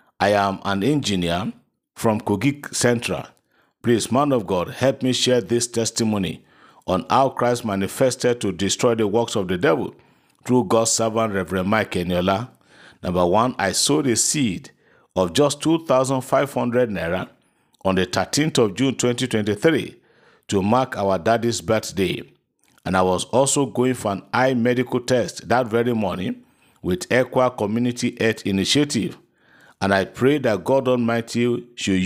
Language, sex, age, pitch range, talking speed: English, male, 50-69, 100-125 Hz, 150 wpm